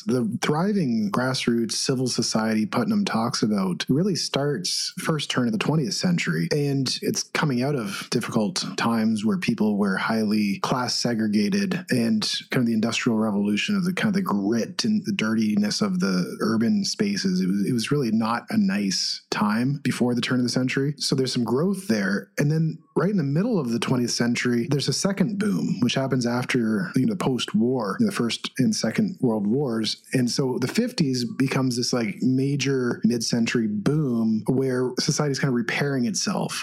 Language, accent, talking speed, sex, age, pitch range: English, American, 185 wpm, male, 30-49, 120-195 Hz